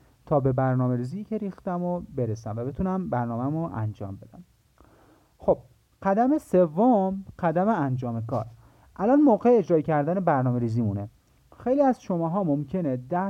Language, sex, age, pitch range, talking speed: Persian, male, 30-49, 125-190 Hz, 150 wpm